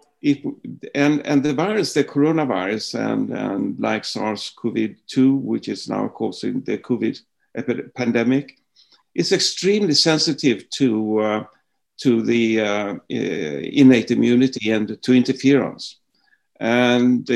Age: 50-69